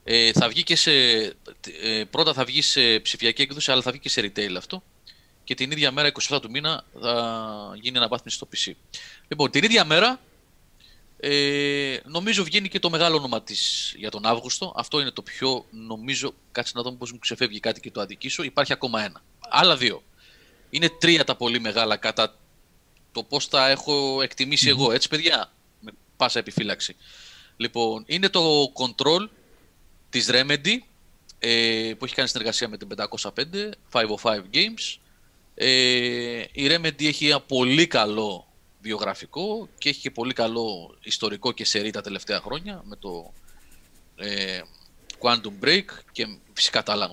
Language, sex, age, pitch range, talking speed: Greek, male, 30-49, 110-145 Hz, 155 wpm